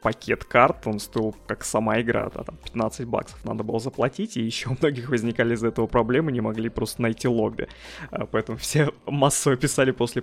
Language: Russian